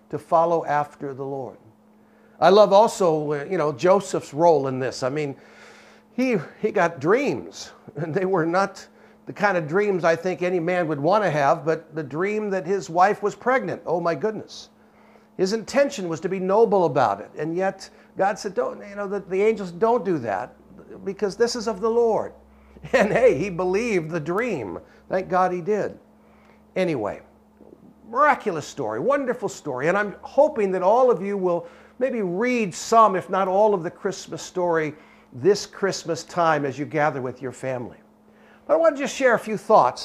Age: 60-79